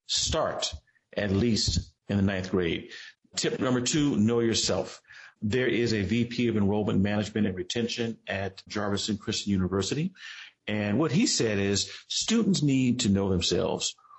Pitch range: 100-115 Hz